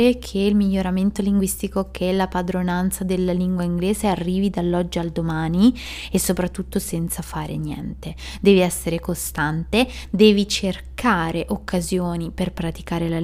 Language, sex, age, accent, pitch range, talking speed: Italian, female, 20-39, native, 180-215 Hz, 125 wpm